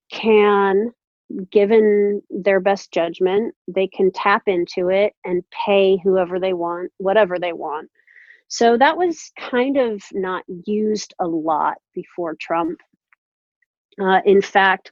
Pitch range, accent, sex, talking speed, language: 180-210 Hz, American, female, 130 wpm, English